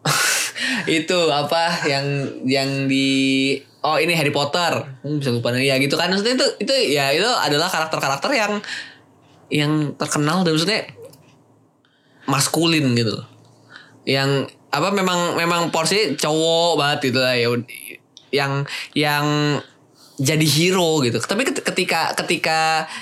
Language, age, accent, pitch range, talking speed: Indonesian, 10-29, native, 135-160 Hz, 115 wpm